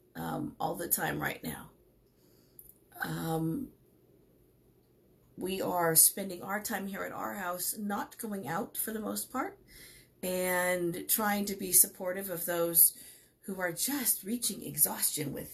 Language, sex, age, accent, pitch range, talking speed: English, female, 40-59, American, 170-225 Hz, 140 wpm